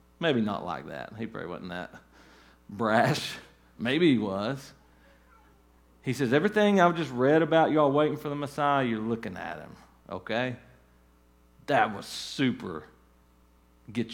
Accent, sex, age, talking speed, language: American, male, 40-59, 140 wpm, English